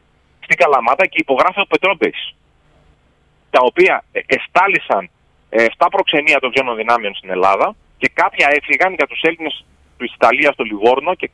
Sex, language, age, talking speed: male, Greek, 30-49, 150 wpm